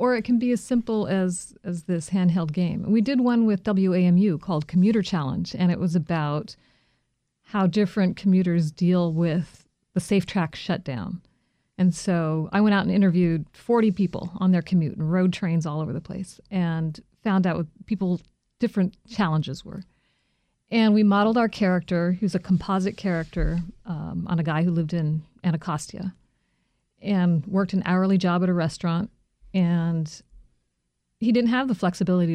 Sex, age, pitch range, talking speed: female, 50-69, 175-215 Hz, 170 wpm